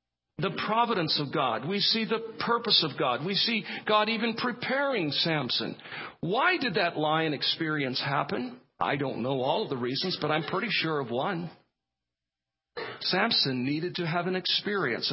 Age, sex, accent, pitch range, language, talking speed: 50-69, male, American, 150-225 Hz, English, 165 wpm